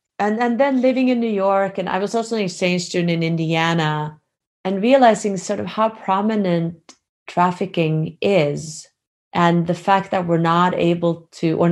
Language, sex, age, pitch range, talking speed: English, female, 30-49, 160-195 Hz, 170 wpm